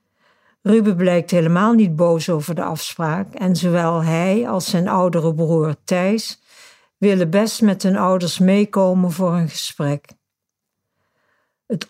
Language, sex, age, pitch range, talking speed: Dutch, female, 60-79, 170-205 Hz, 130 wpm